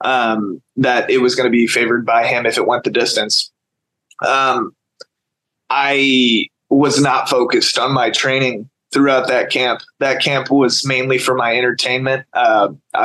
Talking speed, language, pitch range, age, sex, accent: 150 wpm, English, 125-145 Hz, 20-39, male, American